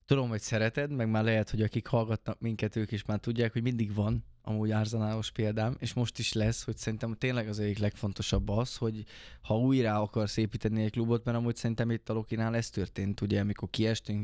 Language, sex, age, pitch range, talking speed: Hungarian, male, 20-39, 105-120 Hz, 205 wpm